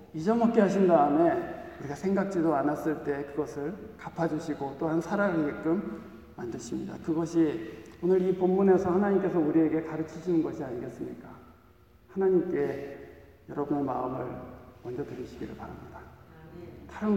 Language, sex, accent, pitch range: Korean, male, native, 125-185 Hz